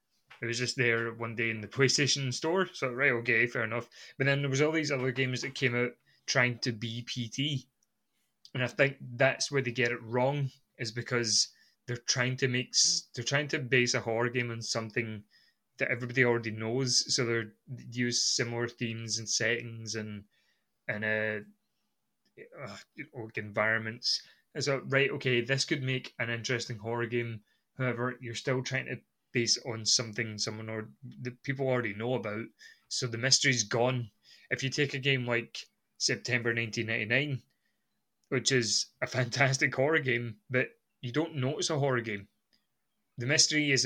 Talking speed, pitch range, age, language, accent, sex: 170 wpm, 115-135 Hz, 20-39, English, British, male